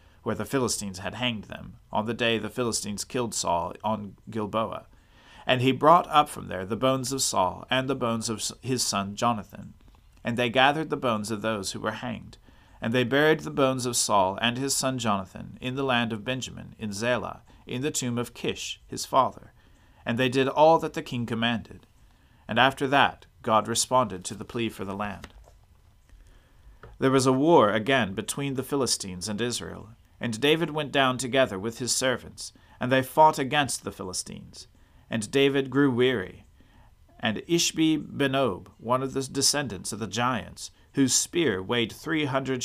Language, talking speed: English, 180 wpm